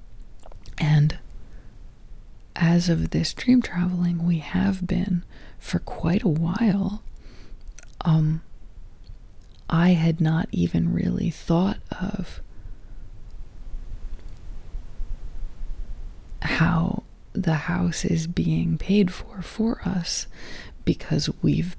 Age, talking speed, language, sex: 20-39, 90 wpm, English, female